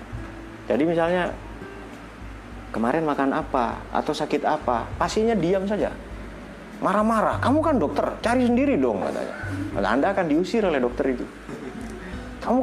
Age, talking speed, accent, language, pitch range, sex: 30-49, 125 wpm, native, Indonesian, 105-160 Hz, male